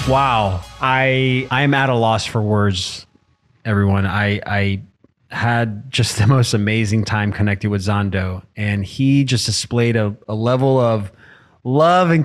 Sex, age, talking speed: male, 20-39, 145 wpm